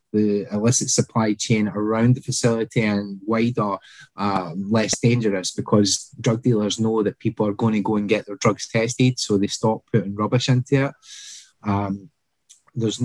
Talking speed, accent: 165 wpm, British